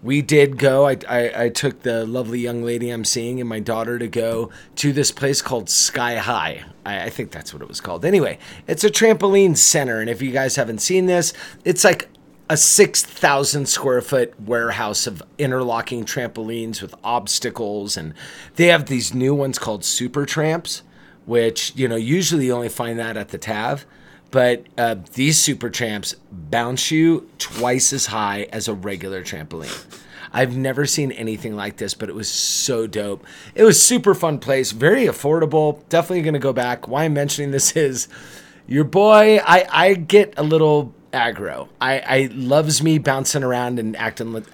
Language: English